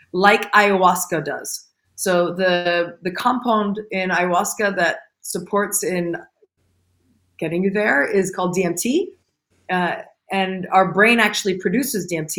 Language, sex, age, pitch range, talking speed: English, female, 30-49, 185-240 Hz, 120 wpm